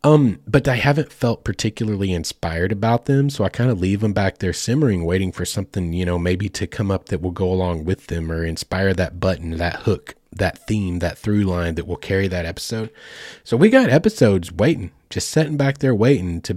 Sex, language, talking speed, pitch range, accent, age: male, English, 215 wpm, 90-130 Hz, American, 30-49